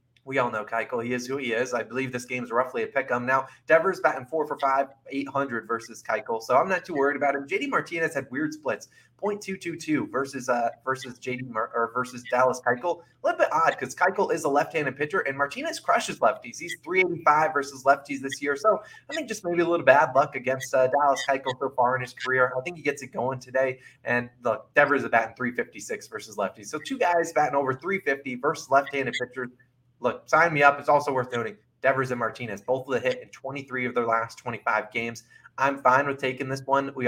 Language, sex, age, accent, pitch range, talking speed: English, male, 20-39, American, 120-145 Hz, 225 wpm